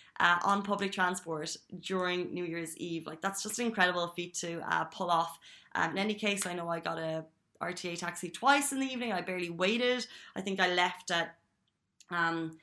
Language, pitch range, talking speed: Arabic, 170-200 Hz, 200 wpm